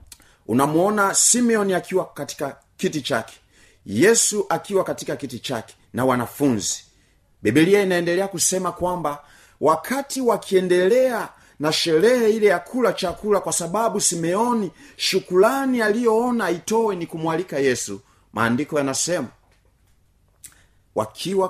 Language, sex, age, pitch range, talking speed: Swahili, male, 30-49, 110-180 Hz, 105 wpm